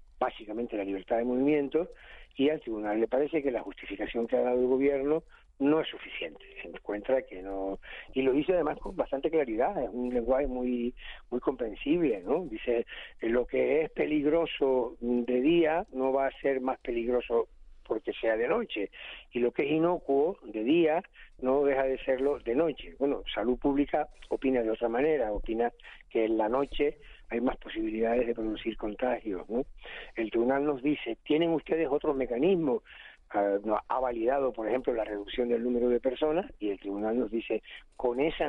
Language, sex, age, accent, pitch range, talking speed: Spanish, male, 50-69, Argentinian, 115-150 Hz, 180 wpm